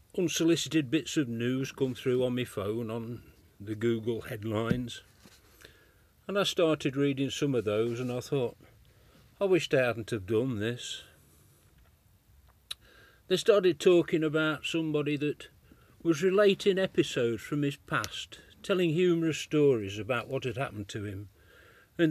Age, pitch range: 50-69, 105-160 Hz